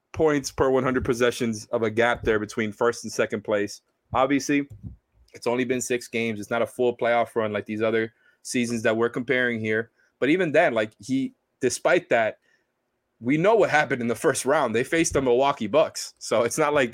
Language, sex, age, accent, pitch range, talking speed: English, male, 20-39, American, 110-130 Hz, 200 wpm